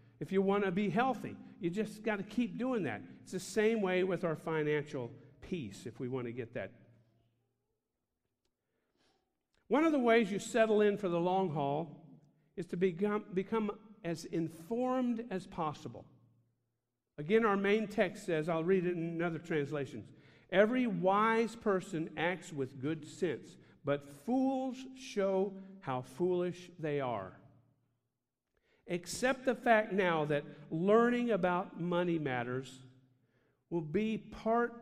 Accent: American